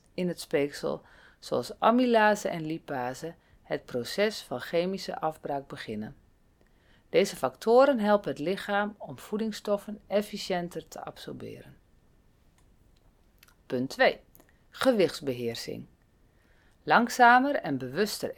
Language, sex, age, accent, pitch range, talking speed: Dutch, female, 40-59, Dutch, 135-210 Hz, 95 wpm